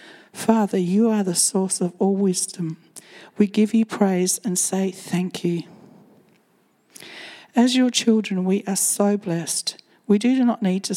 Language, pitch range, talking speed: English, 175-210 Hz, 155 wpm